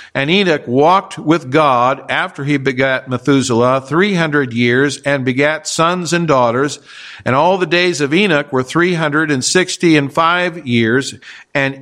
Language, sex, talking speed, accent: English, male, 160 wpm, American